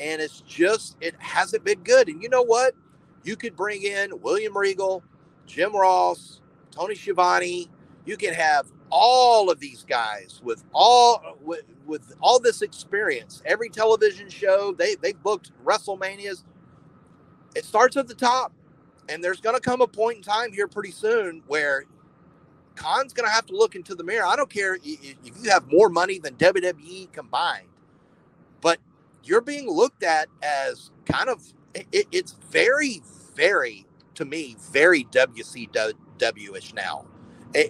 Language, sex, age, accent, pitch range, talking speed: English, male, 40-59, American, 175-255 Hz, 155 wpm